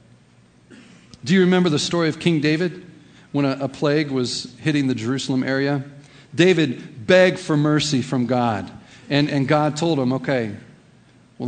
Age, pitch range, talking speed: 50-69, 135-180 Hz, 155 wpm